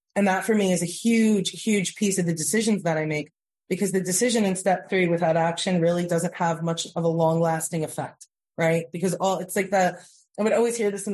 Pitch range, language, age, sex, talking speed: 165-190 Hz, English, 30-49, female, 235 wpm